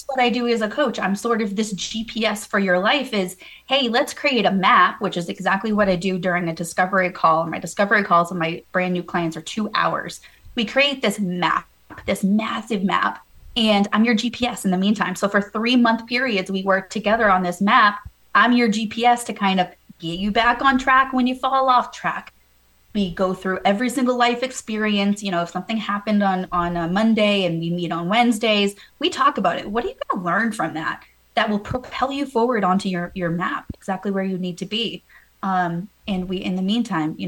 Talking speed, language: 220 wpm, English